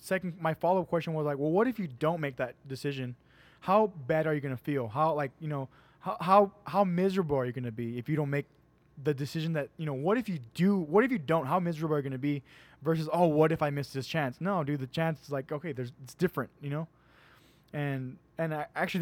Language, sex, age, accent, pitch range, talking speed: English, male, 20-39, American, 135-170 Hz, 250 wpm